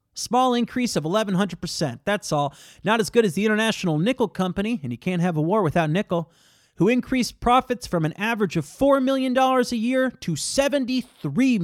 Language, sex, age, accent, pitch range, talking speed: English, male, 30-49, American, 165-240 Hz, 180 wpm